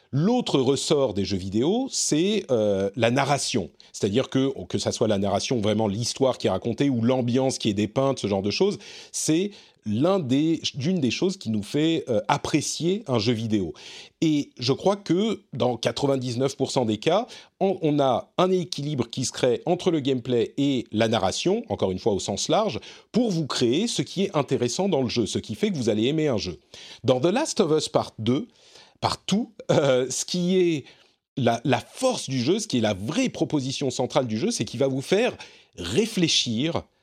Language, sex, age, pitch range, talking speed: French, male, 40-59, 120-180 Hz, 200 wpm